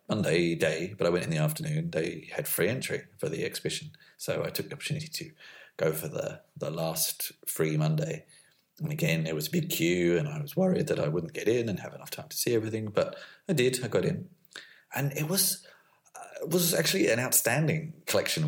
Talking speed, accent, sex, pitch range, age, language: 215 wpm, British, male, 100-160 Hz, 40-59, English